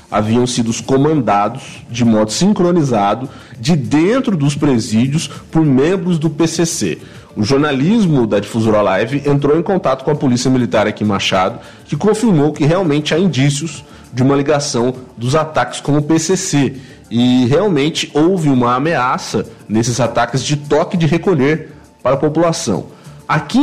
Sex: male